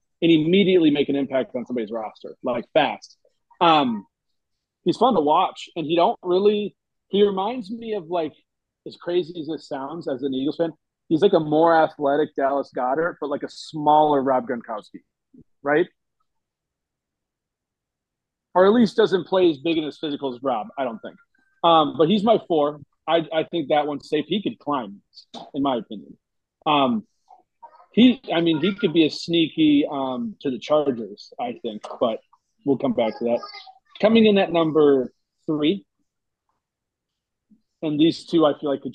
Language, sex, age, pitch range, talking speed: English, male, 40-59, 140-205 Hz, 175 wpm